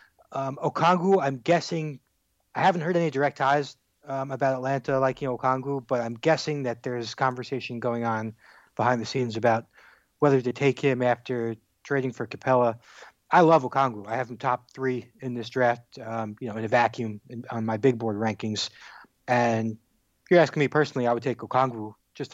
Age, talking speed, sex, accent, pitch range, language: 30-49, 185 wpm, male, American, 120-140 Hz, English